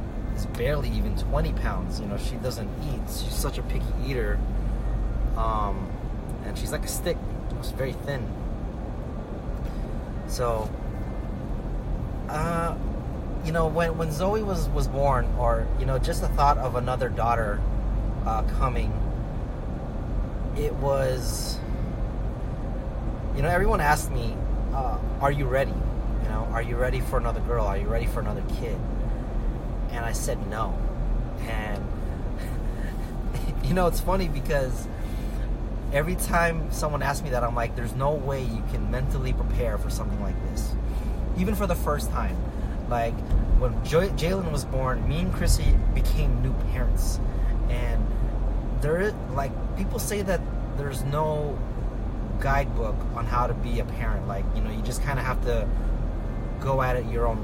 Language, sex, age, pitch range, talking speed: English, male, 30-49, 110-135 Hz, 150 wpm